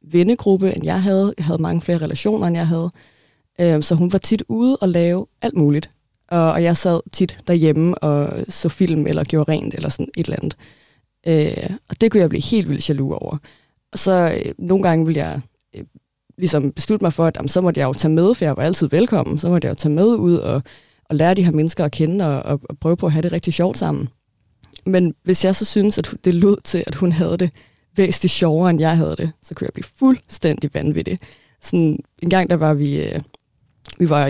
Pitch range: 145-175 Hz